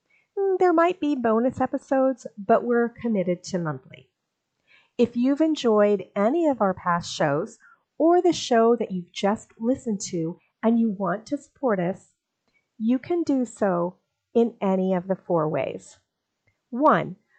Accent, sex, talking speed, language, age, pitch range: American, female, 150 wpm, English, 40-59, 190-255 Hz